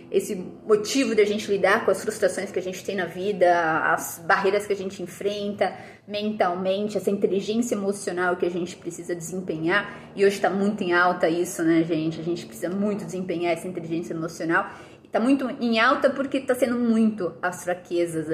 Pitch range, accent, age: 180-230 Hz, Brazilian, 20-39